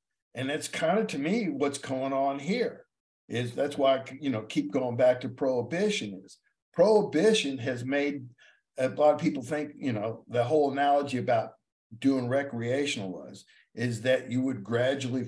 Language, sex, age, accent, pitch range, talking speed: English, male, 50-69, American, 120-145 Hz, 170 wpm